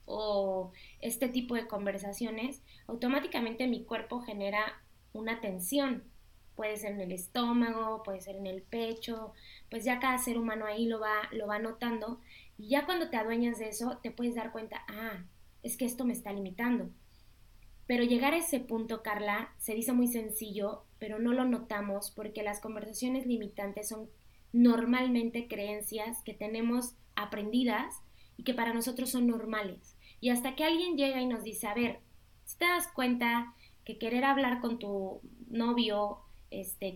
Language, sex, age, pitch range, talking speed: Spanish, female, 20-39, 210-245 Hz, 165 wpm